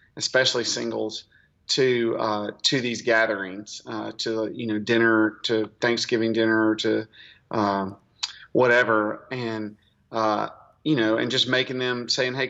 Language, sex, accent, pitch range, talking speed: English, male, American, 110-120 Hz, 135 wpm